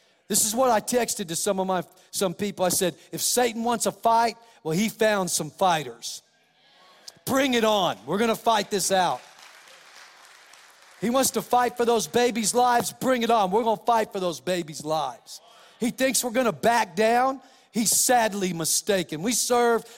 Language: English